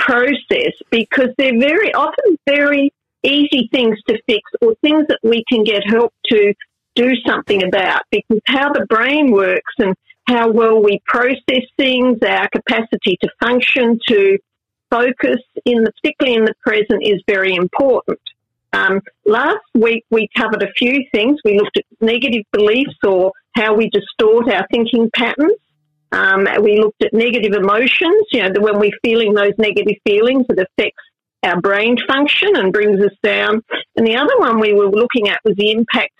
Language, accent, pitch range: English, Australian, 210-265 Hz